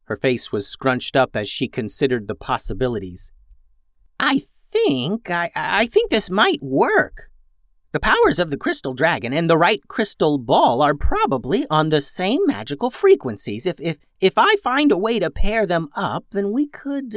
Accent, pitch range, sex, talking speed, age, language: American, 130-210 Hz, male, 175 wpm, 40-59, English